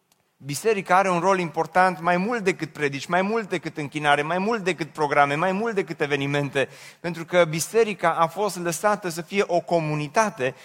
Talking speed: 175 wpm